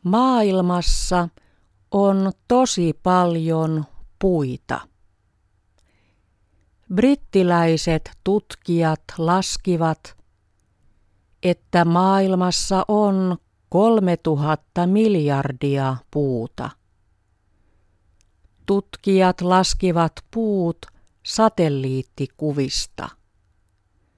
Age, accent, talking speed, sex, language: 50-69, native, 45 wpm, female, Finnish